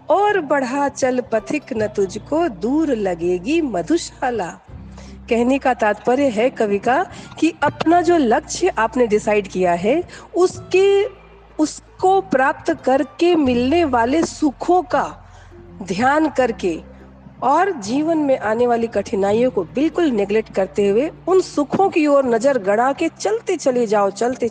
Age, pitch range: 40-59, 210-310 Hz